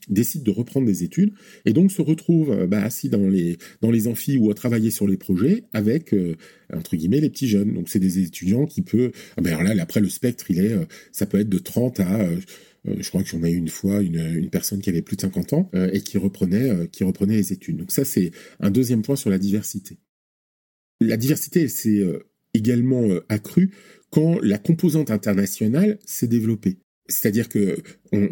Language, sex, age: French, male, 40-59